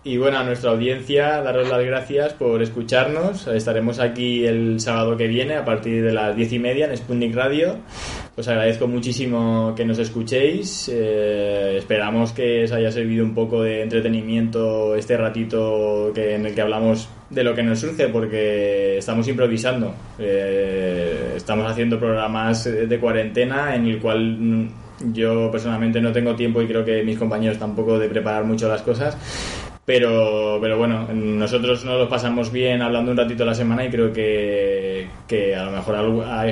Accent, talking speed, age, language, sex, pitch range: Spanish, 170 wpm, 20-39, Spanish, male, 110-120 Hz